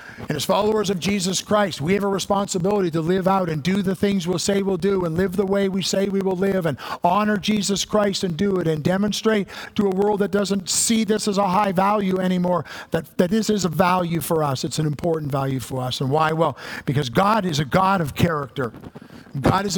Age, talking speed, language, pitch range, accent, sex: 50-69, 235 wpm, English, 170-220 Hz, American, male